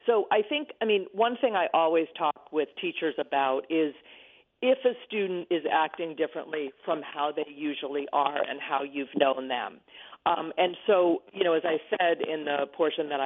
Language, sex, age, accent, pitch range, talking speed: English, female, 40-59, American, 150-200 Hz, 190 wpm